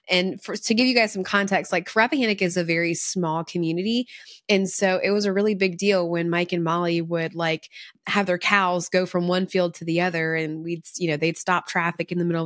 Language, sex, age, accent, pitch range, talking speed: English, female, 20-39, American, 170-205 Hz, 235 wpm